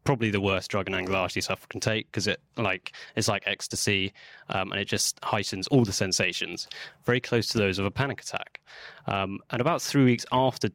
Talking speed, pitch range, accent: 205 wpm, 100-115 Hz, British